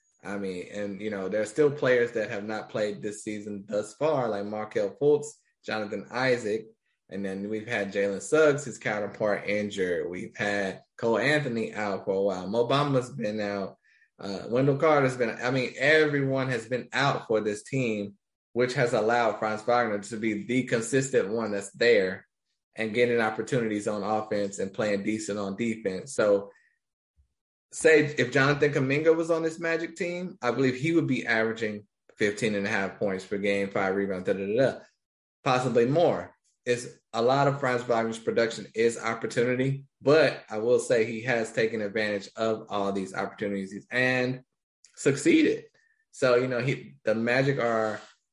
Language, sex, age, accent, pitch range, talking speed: English, male, 20-39, American, 105-140 Hz, 170 wpm